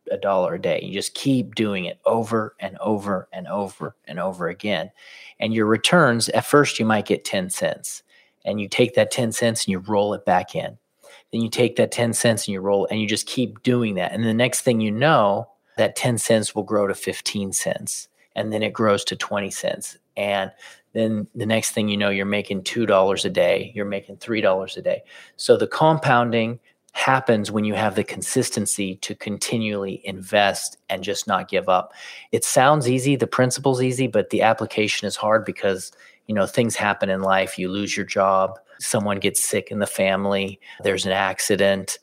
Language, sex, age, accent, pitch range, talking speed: English, male, 40-59, American, 100-120 Hz, 200 wpm